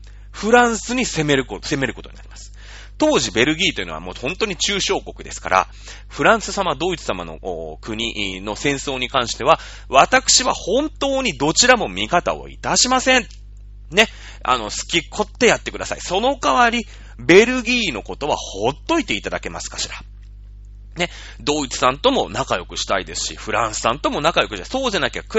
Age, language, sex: 30-49, Japanese, male